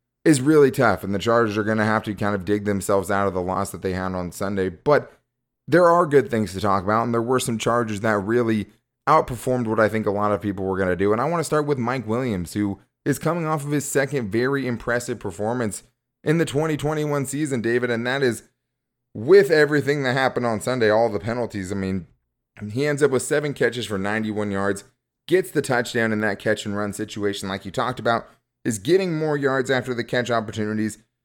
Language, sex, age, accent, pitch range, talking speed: English, male, 30-49, American, 105-135 Hz, 225 wpm